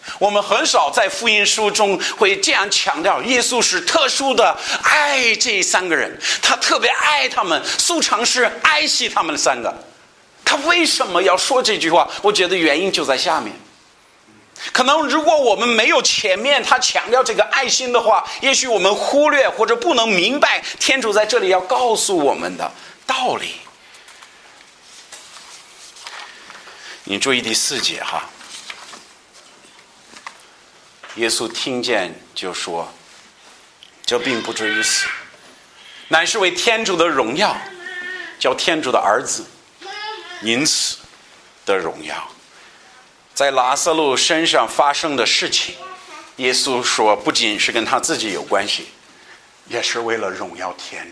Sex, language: male, Chinese